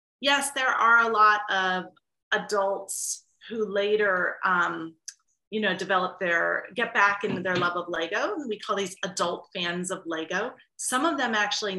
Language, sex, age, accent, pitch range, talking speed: English, female, 30-49, American, 185-245 Hz, 165 wpm